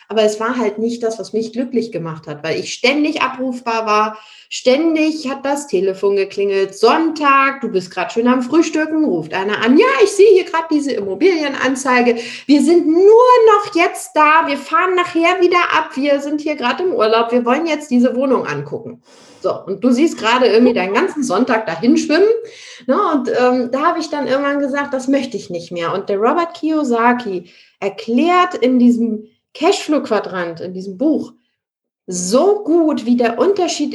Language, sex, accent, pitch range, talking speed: German, female, German, 225-305 Hz, 180 wpm